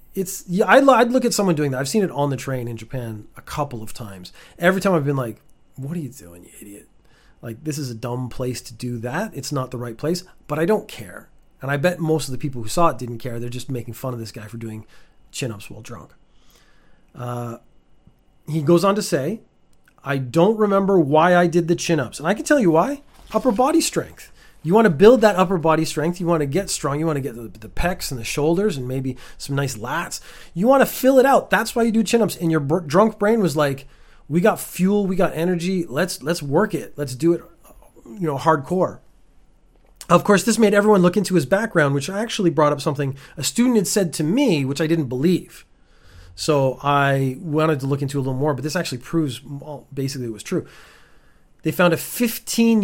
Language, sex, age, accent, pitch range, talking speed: English, male, 30-49, American, 130-190 Hz, 230 wpm